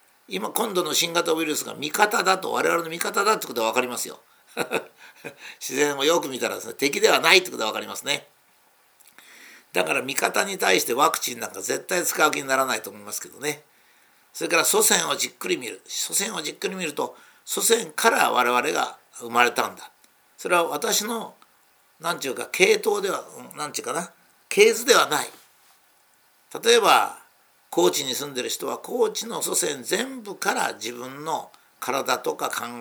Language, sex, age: Japanese, male, 50-69